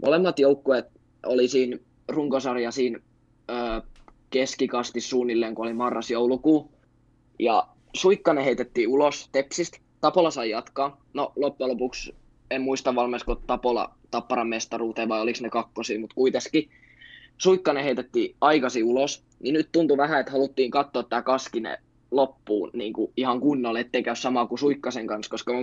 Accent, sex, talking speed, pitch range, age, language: native, male, 140 wpm, 115-135 Hz, 20-39, Finnish